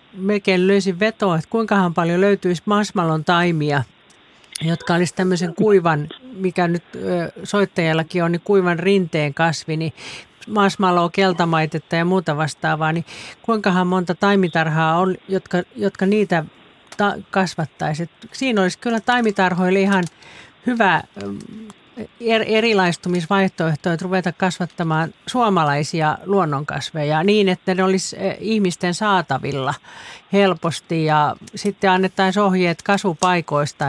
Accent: native